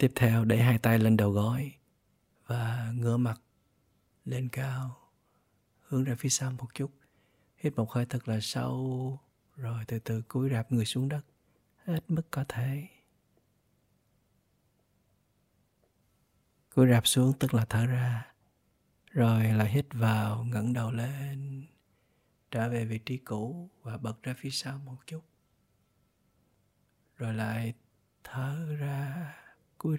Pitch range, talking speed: 115-140 Hz, 135 wpm